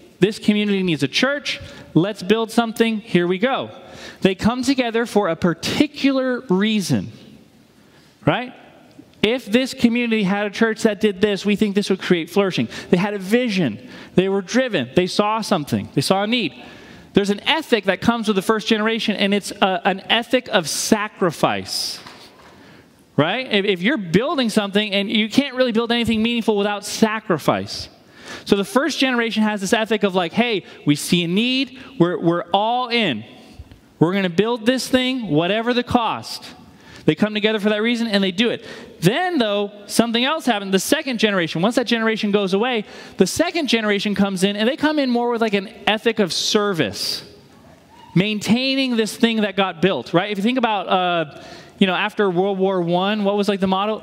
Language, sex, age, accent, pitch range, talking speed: English, male, 30-49, American, 195-235 Hz, 185 wpm